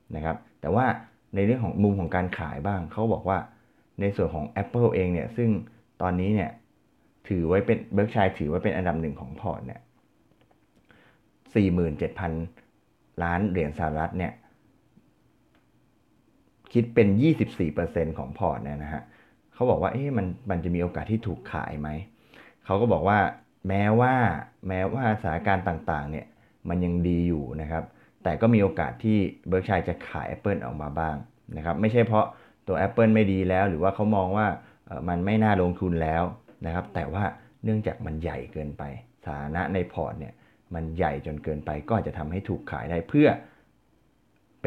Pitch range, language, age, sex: 80-105 Hz, Thai, 20-39, male